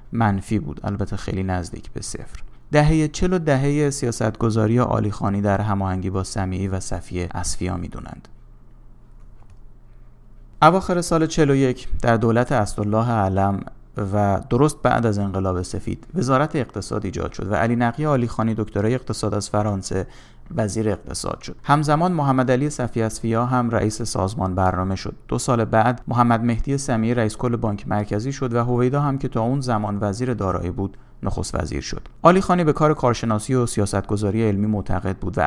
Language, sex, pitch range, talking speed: Persian, male, 100-130 Hz, 160 wpm